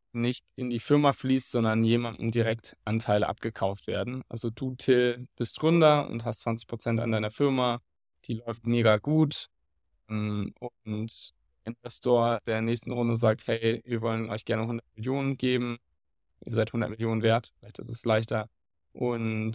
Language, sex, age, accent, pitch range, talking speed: German, male, 20-39, German, 105-120 Hz, 155 wpm